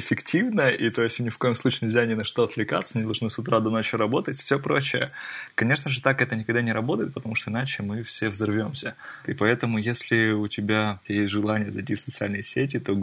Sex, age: male, 20-39